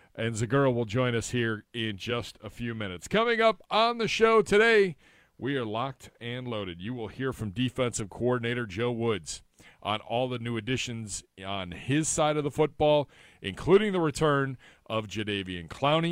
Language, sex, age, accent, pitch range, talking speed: English, male, 40-59, American, 100-130 Hz, 175 wpm